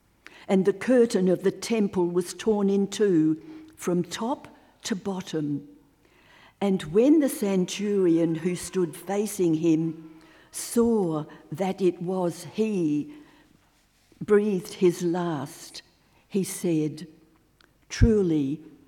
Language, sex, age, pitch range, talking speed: English, female, 60-79, 155-190 Hz, 105 wpm